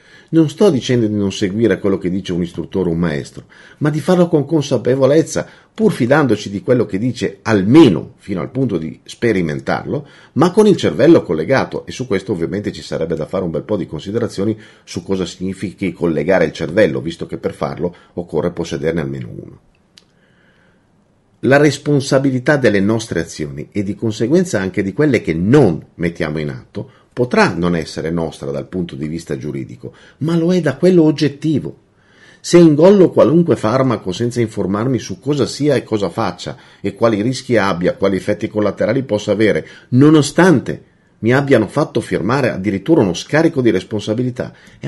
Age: 50-69